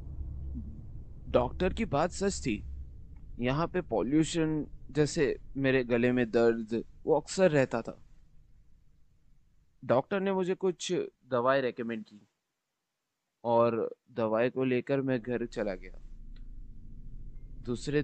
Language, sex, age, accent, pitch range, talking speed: Hindi, male, 20-39, native, 100-150 Hz, 110 wpm